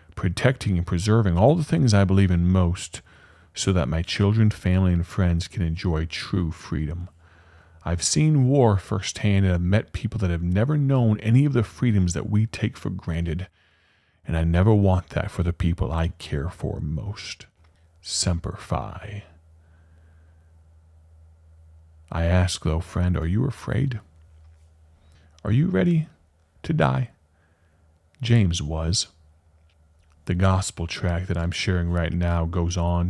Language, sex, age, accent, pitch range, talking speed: English, male, 40-59, American, 80-95 Hz, 145 wpm